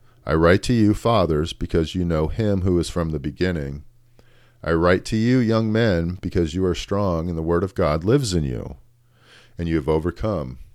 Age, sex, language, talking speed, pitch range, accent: 40-59, male, English, 200 wpm, 85-120 Hz, American